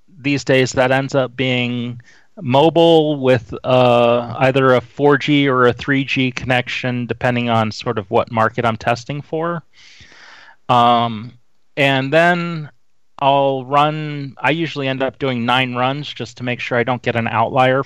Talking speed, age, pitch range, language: 160 wpm, 30-49, 120-145 Hz, English